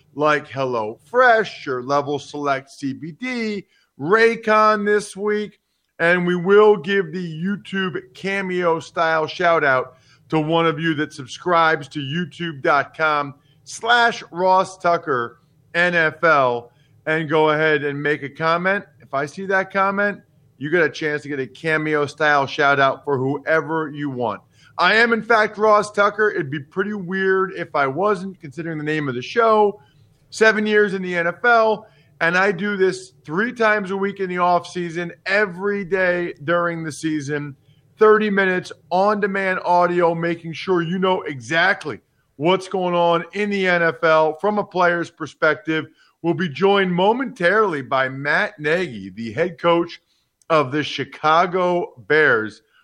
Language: English